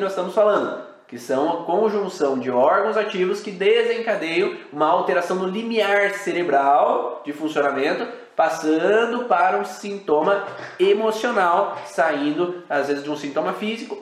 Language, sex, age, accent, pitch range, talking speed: Portuguese, male, 20-39, Brazilian, 170-230 Hz, 135 wpm